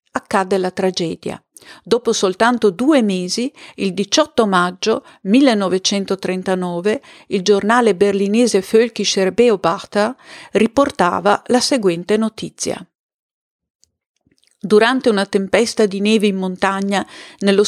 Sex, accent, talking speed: female, native, 95 wpm